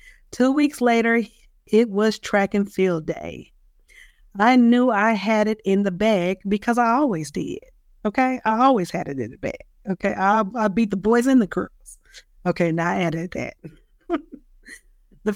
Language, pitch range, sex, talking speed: English, 180-235 Hz, female, 170 wpm